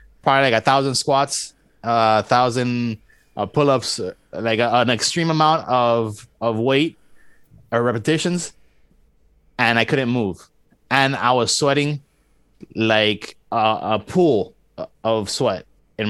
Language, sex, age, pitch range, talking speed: English, male, 20-39, 100-125 Hz, 120 wpm